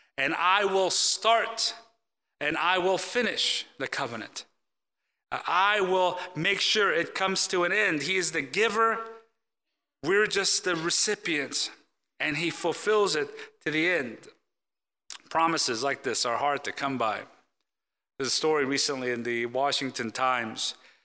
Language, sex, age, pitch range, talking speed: English, male, 40-59, 125-180 Hz, 145 wpm